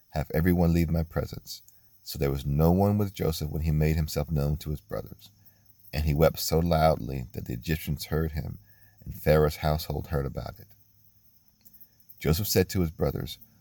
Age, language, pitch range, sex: 40-59, English, 75-95 Hz, male